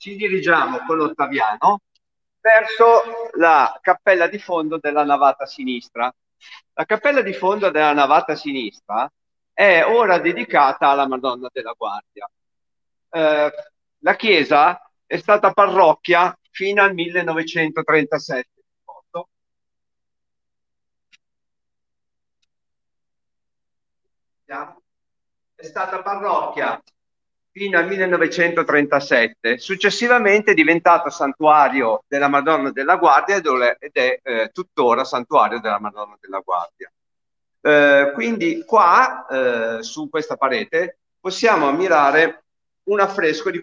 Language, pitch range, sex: Italian, 140-200 Hz, male